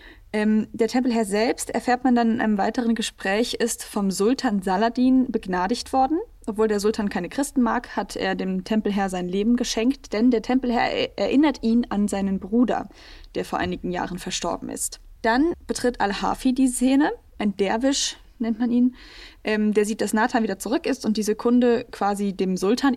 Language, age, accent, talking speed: German, 10-29, German, 180 wpm